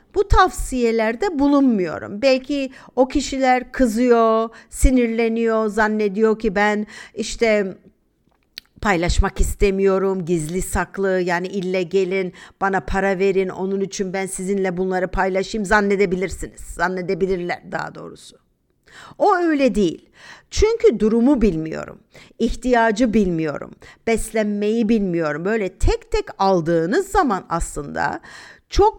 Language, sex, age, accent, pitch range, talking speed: Turkish, female, 50-69, native, 195-290 Hz, 100 wpm